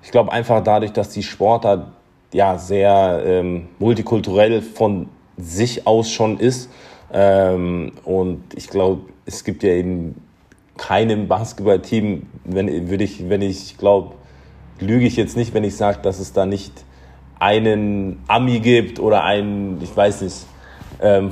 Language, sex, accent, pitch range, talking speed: German, male, German, 95-110 Hz, 145 wpm